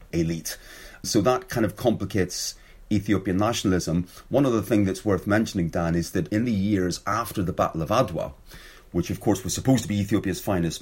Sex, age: male, 30-49